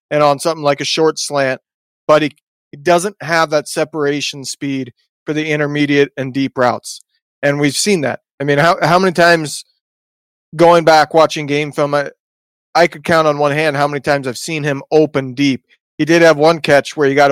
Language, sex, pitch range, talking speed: English, male, 135-155 Hz, 205 wpm